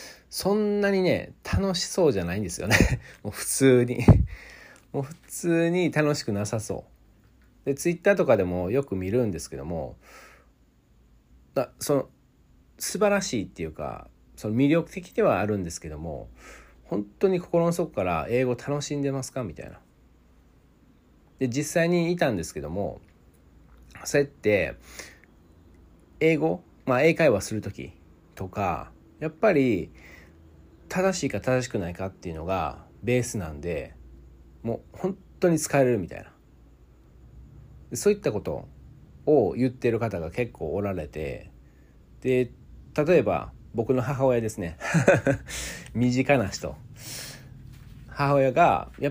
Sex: male